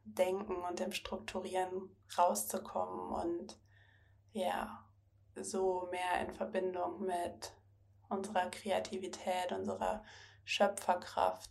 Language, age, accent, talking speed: German, 20-39, German, 85 wpm